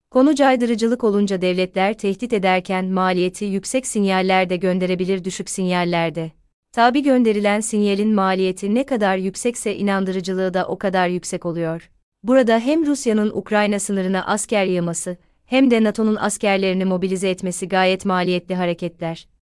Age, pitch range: 30-49, 185-215 Hz